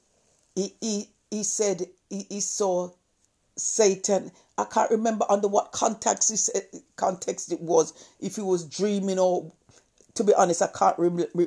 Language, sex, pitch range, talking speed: English, female, 170-210 Hz, 155 wpm